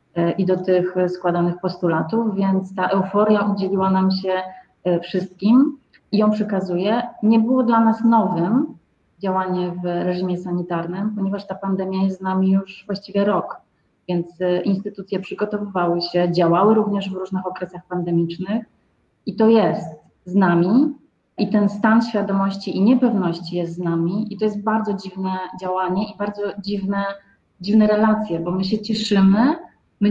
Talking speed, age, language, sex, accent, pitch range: 145 wpm, 30-49, Polish, female, native, 185-215 Hz